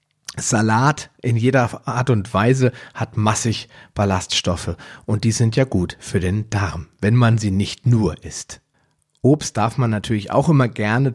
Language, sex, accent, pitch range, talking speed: German, male, German, 100-125 Hz, 160 wpm